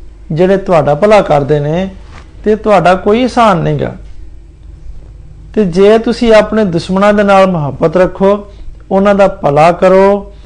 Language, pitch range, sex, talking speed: Hindi, 150-210 Hz, male, 90 wpm